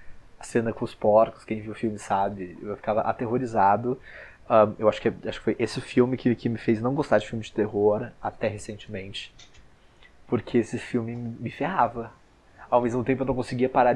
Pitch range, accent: 100-115 Hz, Brazilian